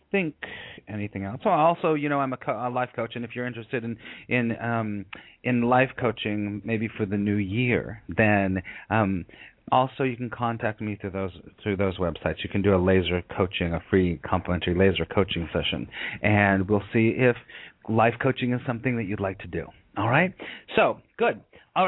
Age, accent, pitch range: 30-49, American, 105-150 Hz